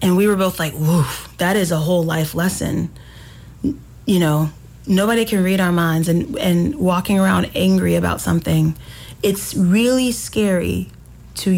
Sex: female